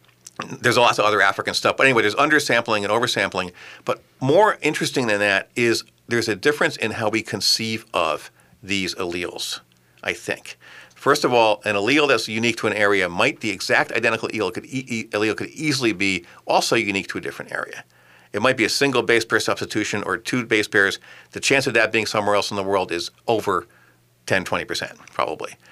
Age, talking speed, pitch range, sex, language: 50-69, 190 wpm, 95-115 Hz, male, English